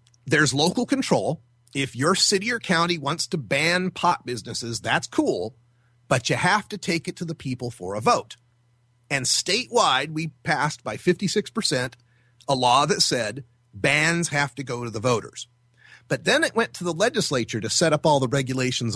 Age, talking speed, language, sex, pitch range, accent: 30-49, 185 wpm, English, male, 125-175 Hz, American